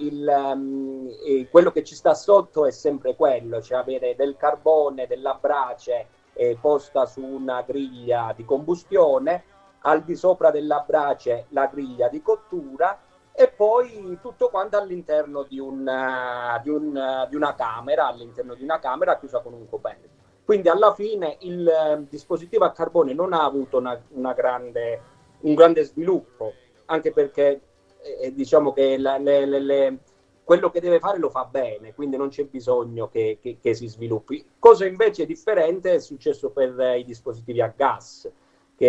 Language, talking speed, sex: Italian, 160 wpm, male